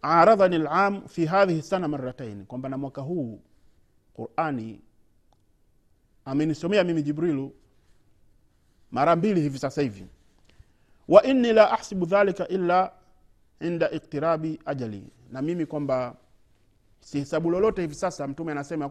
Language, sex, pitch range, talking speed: Swahili, male, 125-170 Hz, 115 wpm